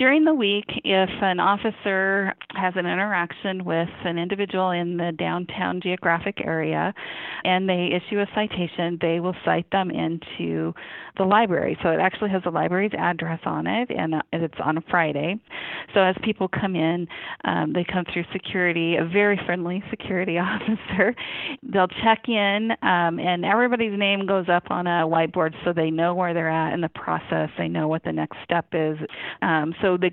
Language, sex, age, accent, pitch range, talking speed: English, female, 40-59, American, 165-195 Hz, 175 wpm